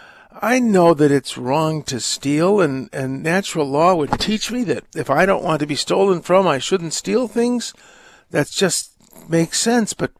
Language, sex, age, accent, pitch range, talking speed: English, male, 50-69, American, 150-195 Hz, 190 wpm